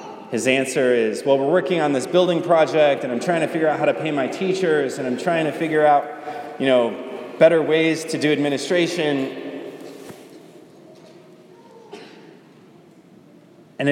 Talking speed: 150 wpm